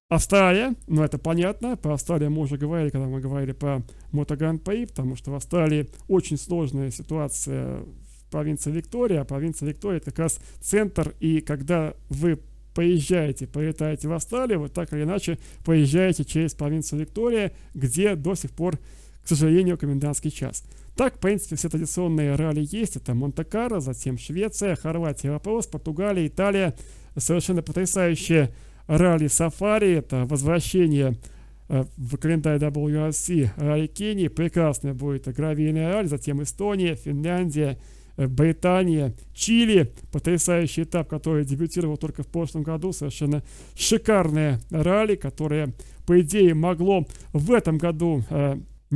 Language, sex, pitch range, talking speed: Russian, male, 145-175 Hz, 135 wpm